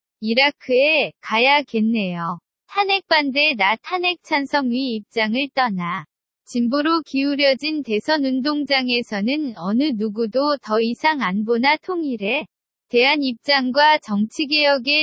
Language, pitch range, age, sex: Korean, 225-295 Hz, 20-39, female